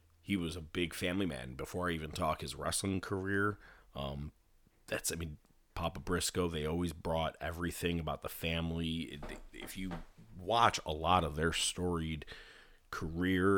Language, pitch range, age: English, 80-95 Hz, 30-49